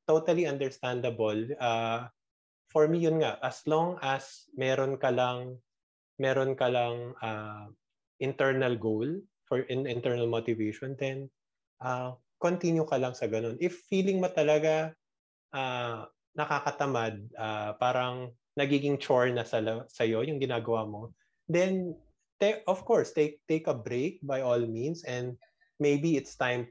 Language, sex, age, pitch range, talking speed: Filipino, male, 20-39, 115-150 Hz, 145 wpm